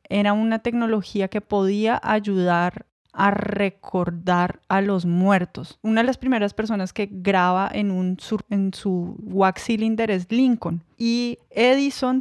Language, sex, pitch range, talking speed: Spanish, female, 195-225 Hz, 145 wpm